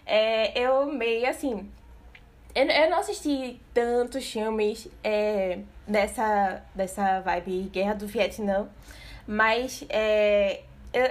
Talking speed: 110 wpm